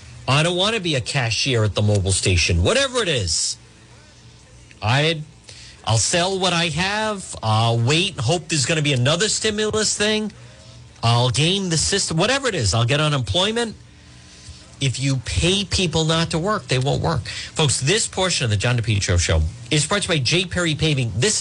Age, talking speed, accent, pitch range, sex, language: 50-69, 185 wpm, American, 115-165 Hz, male, English